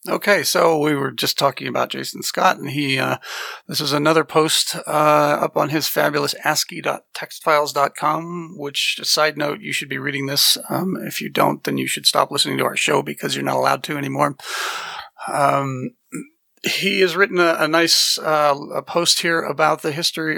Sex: male